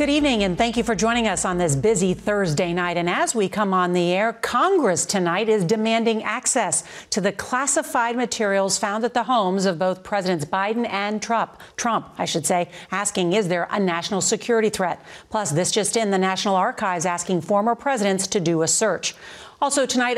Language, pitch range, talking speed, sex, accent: English, 175-225 Hz, 195 wpm, female, American